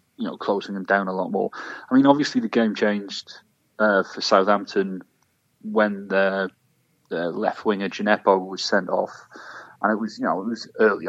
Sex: male